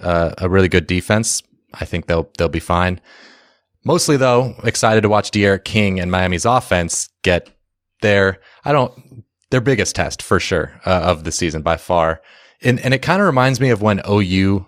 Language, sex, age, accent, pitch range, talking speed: English, male, 20-39, American, 90-110 Hz, 190 wpm